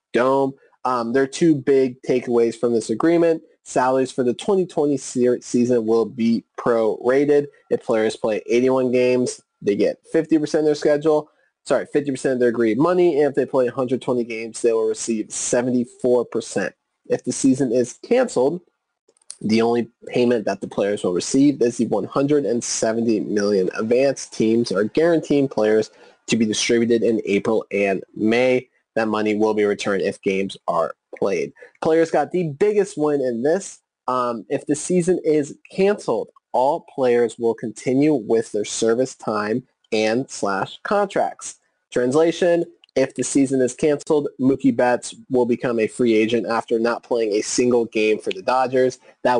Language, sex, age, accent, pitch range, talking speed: English, male, 20-39, American, 115-150 Hz, 160 wpm